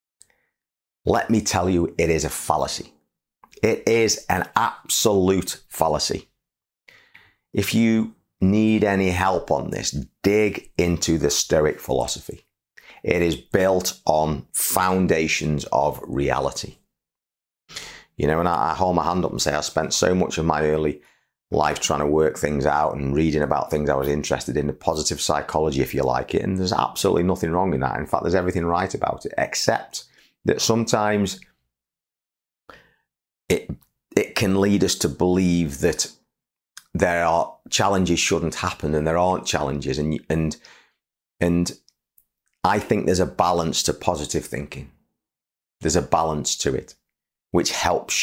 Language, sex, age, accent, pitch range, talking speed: English, male, 30-49, British, 75-95 Hz, 155 wpm